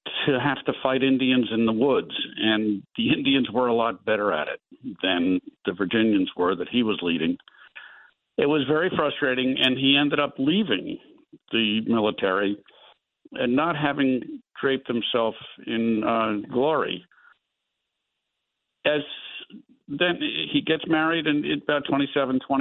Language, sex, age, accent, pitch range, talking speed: English, male, 50-69, American, 120-185 Hz, 140 wpm